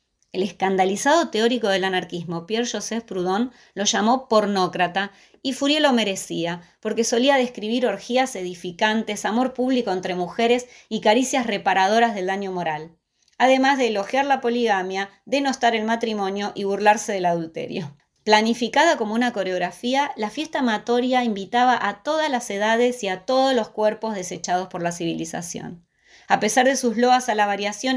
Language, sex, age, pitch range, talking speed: Spanish, female, 20-39, 195-245 Hz, 150 wpm